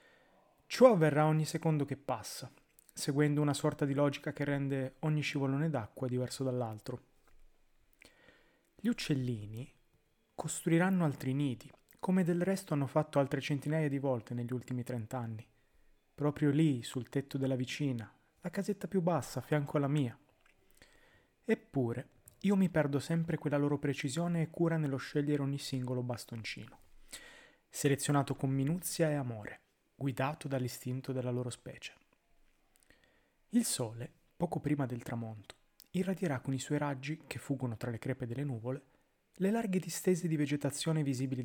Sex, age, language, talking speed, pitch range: male, 30-49, Italian, 140 wpm, 125-155 Hz